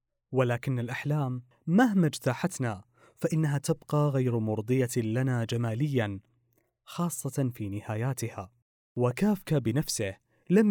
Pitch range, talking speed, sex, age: 115-150 Hz, 90 wpm, male, 20-39